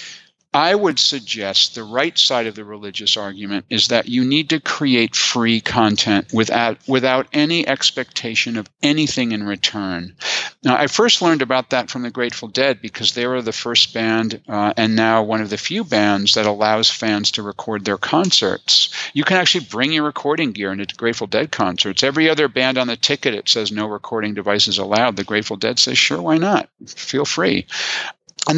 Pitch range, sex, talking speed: 105-140 Hz, male, 190 wpm